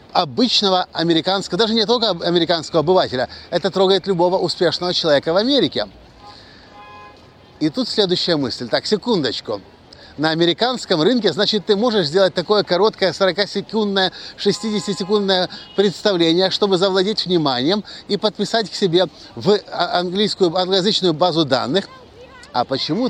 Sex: male